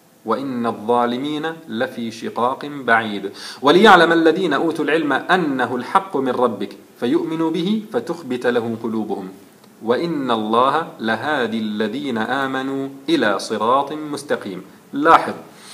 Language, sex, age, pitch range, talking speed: Arabic, male, 40-59, 120-170 Hz, 105 wpm